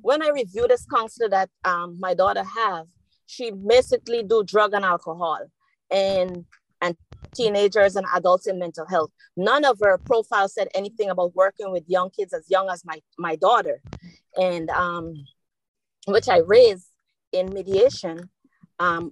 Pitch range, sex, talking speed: 180-260 Hz, female, 155 wpm